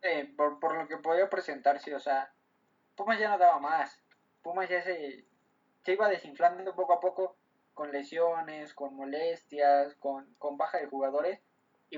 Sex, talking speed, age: male, 165 wpm, 20-39